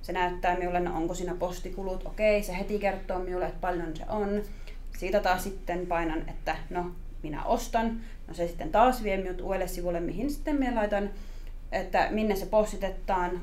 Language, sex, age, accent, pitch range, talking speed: Finnish, female, 30-49, native, 175-210 Hz, 175 wpm